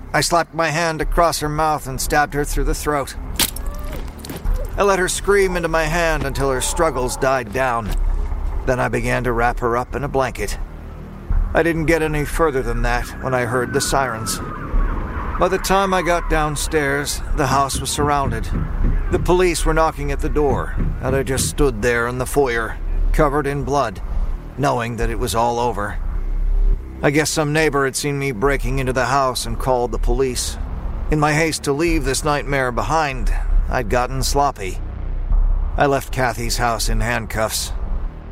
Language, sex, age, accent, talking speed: English, male, 40-59, American, 175 wpm